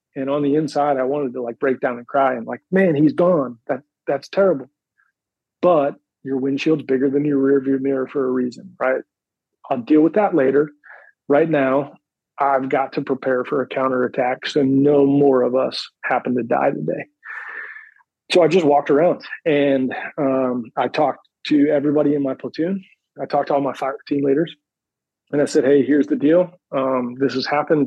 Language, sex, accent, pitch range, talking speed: English, male, American, 130-155 Hz, 190 wpm